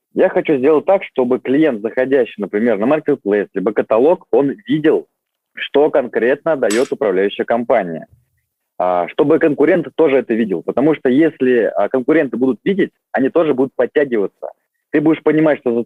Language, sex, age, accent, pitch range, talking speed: Russian, male, 20-39, native, 115-160 Hz, 150 wpm